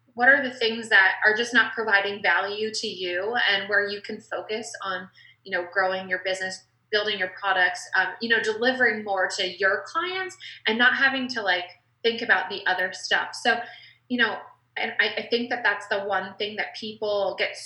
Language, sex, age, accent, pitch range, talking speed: English, female, 20-39, American, 190-225 Hz, 200 wpm